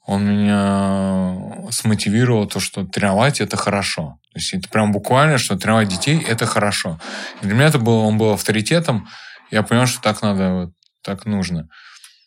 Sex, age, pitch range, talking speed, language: male, 20-39, 95-115 Hz, 160 wpm, Russian